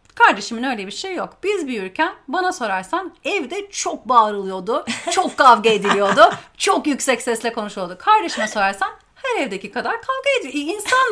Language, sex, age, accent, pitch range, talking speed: Turkish, female, 40-59, native, 230-365 Hz, 145 wpm